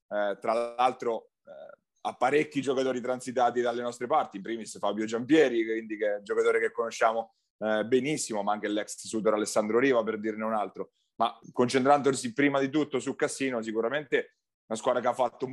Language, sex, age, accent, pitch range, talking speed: Italian, male, 30-49, native, 110-135 Hz, 180 wpm